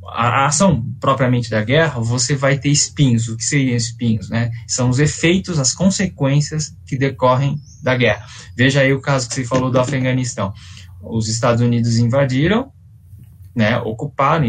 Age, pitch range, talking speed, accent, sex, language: 20-39, 115-150 Hz, 155 wpm, Brazilian, male, Portuguese